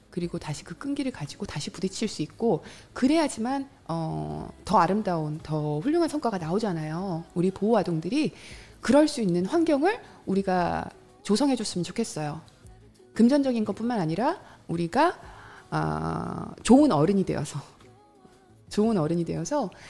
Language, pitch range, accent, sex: Korean, 165-230 Hz, native, female